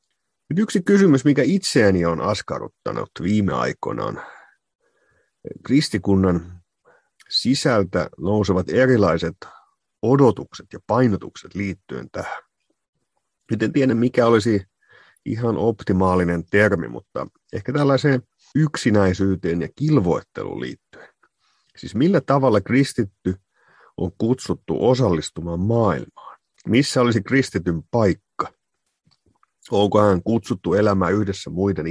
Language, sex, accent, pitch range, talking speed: Finnish, male, native, 90-120 Hz, 95 wpm